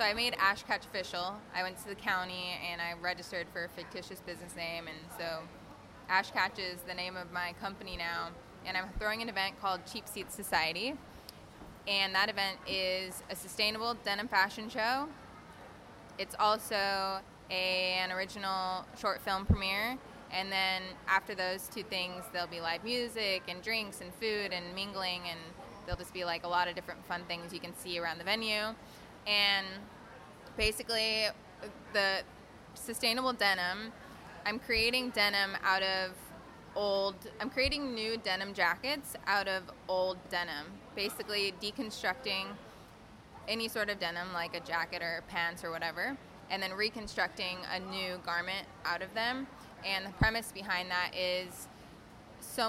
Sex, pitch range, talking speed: female, 180-210 Hz, 155 wpm